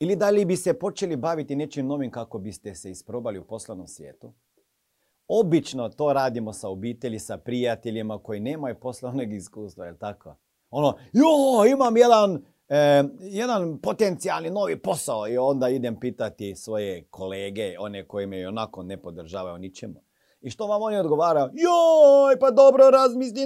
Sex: male